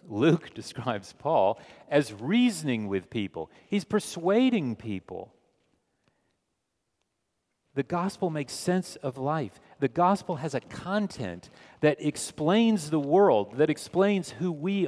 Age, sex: 40-59, male